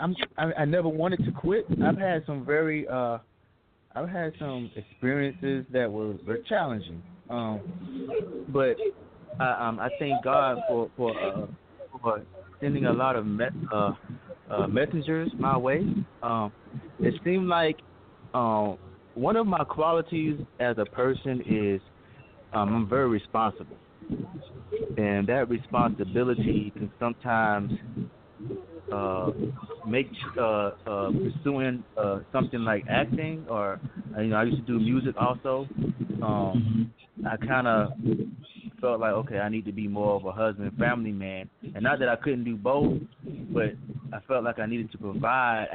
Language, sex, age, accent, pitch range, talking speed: English, male, 30-49, American, 105-135 Hz, 150 wpm